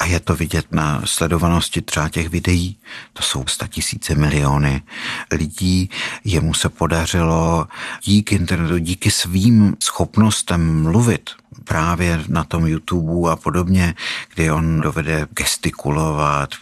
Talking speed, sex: 120 wpm, male